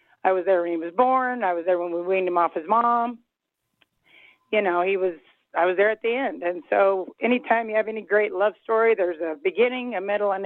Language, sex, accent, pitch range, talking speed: English, female, American, 170-215 Hz, 240 wpm